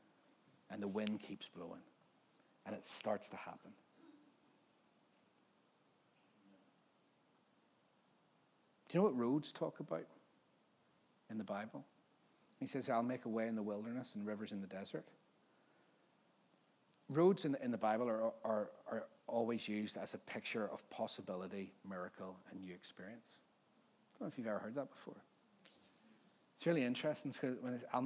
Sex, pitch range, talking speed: male, 105-130 Hz, 145 wpm